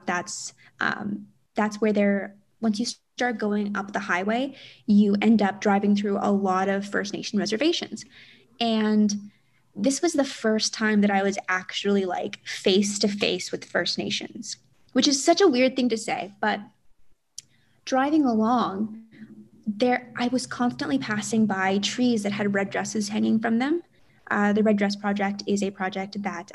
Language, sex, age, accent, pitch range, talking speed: English, female, 20-39, American, 195-230 Hz, 165 wpm